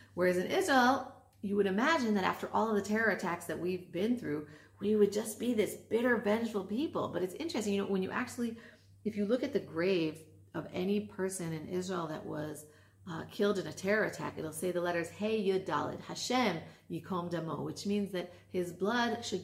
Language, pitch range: English, 160-210 Hz